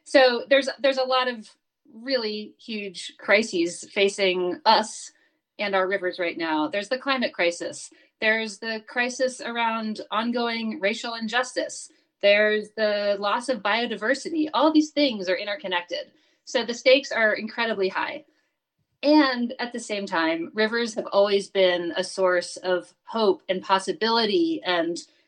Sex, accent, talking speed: female, American, 140 wpm